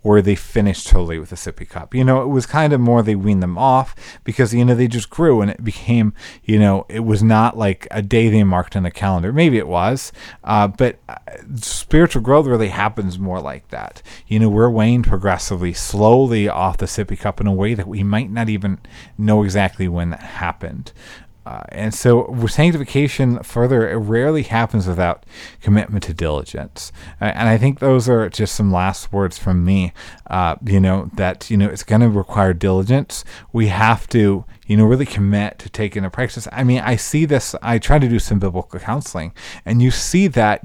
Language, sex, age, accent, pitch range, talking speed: English, male, 30-49, American, 95-120 Hz, 205 wpm